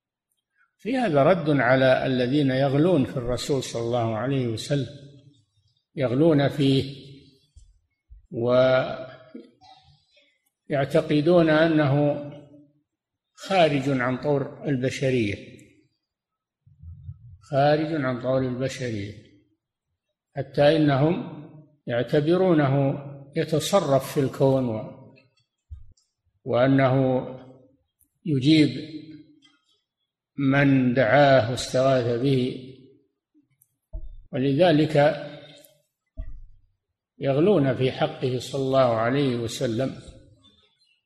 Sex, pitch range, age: male, 125-150 Hz, 50-69